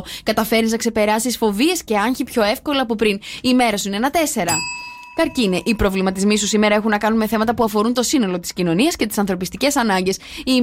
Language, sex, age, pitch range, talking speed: English, female, 20-39, 200-270 Hz, 210 wpm